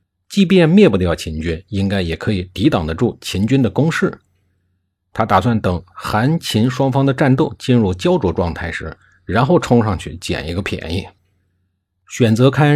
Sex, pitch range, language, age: male, 90-125 Hz, Chinese, 50-69